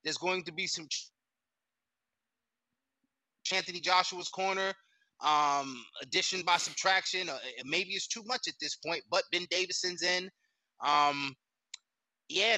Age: 20-39